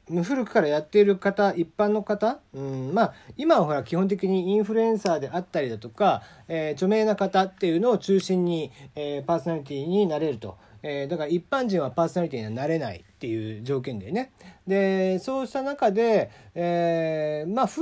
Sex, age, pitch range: male, 40-59, 150-215 Hz